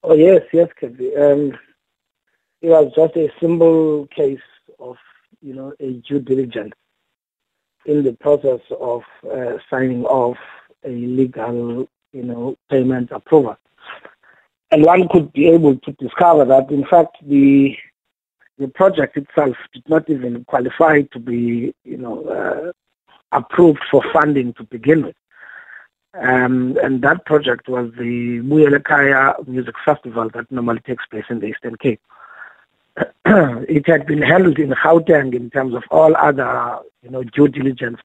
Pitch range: 125-150 Hz